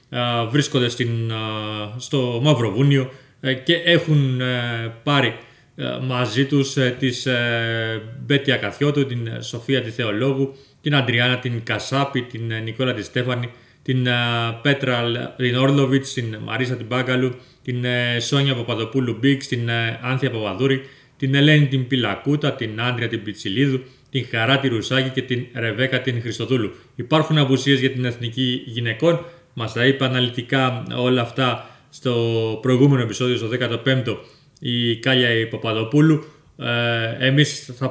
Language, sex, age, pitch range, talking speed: Greek, male, 30-49, 115-135 Hz, 140 wpm